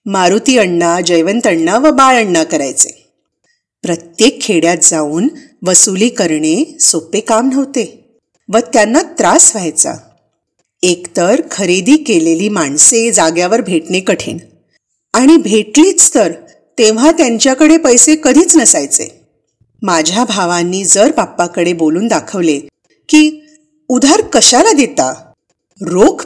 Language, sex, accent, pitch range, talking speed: Marathi, female, native, 170-275 Hz, 105 wpm